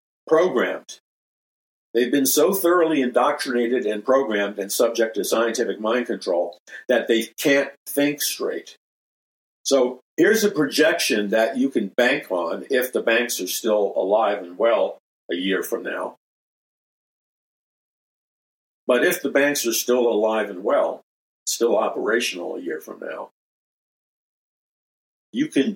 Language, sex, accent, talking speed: English, male, American, 135 wpm